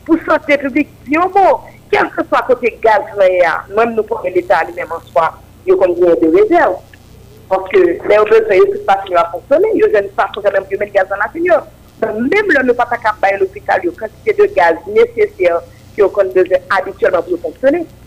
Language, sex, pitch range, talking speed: French, female, 200-330 Hz, 205 wpm